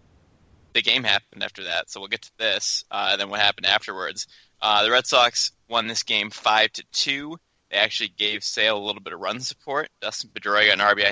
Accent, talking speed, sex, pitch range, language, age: American, 220 wpm, male, 100-125 Hz, English, 20-39